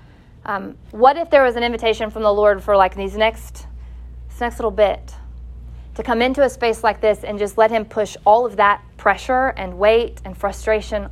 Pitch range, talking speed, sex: 185-240 Hz, 205 wpm, female